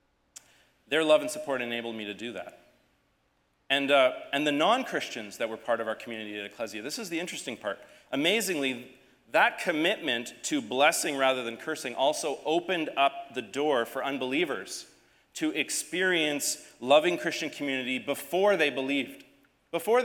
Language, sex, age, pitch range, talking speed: English, male, 30-49, 125-170 Hz, 155 wpm